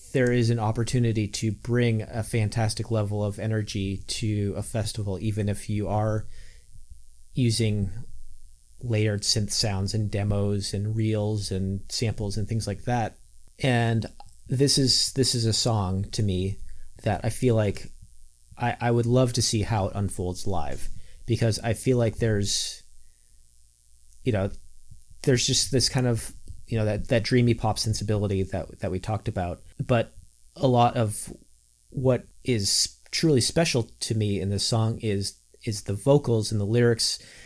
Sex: male